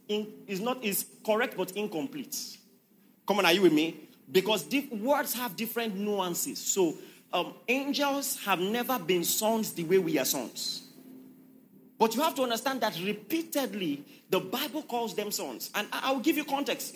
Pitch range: 210-280 Hz